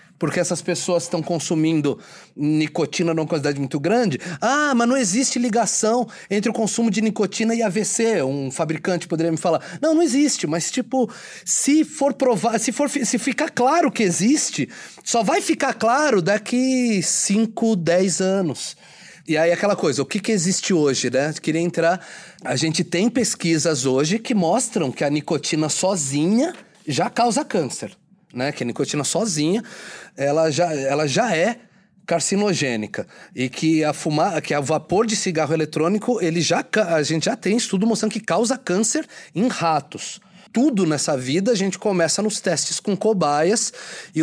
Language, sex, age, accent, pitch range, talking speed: Portuguese, male, 30-49, Brazilian, 160-230 Hz, 165 wpm